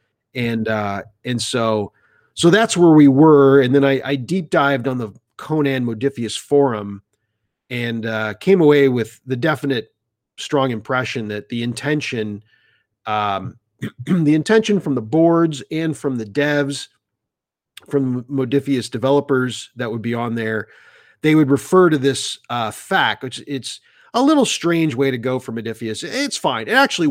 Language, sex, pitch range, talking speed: English, male, 115-145 Hz, 155 wpm